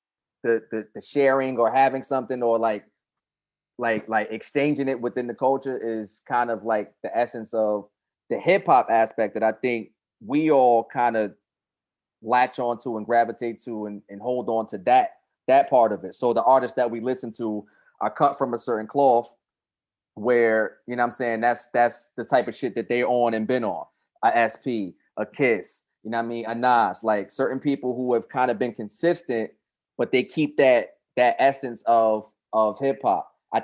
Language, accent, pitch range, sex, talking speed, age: English, American, 110-130 Hz, male, 200 wpm, 20-39